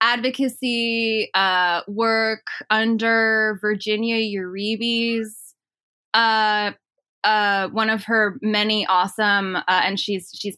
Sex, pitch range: female, 195-225 Hz